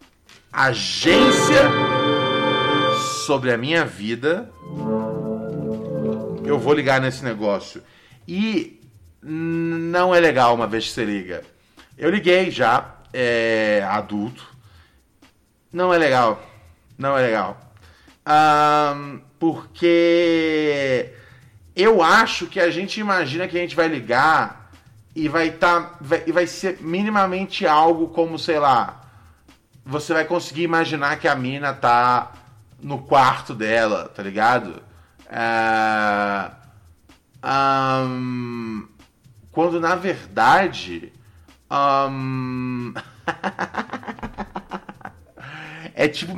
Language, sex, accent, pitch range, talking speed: Portuguese, male, Brazilian, 115-170 Hz, 95 wpm